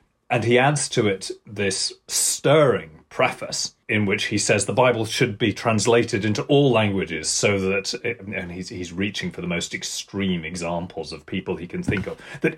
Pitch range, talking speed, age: 95-125 Hz, 185 wpm, 30-49